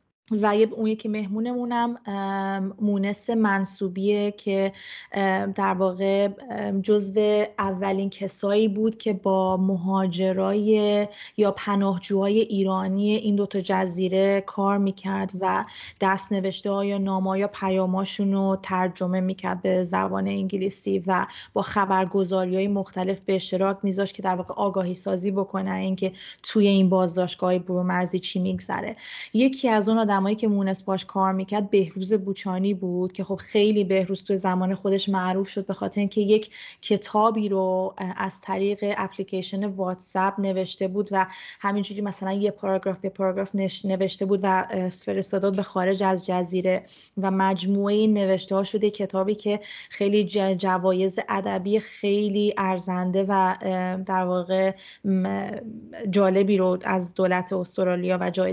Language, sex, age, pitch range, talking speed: Persian, female, 20-39, 190-205 Hz, 125 wpm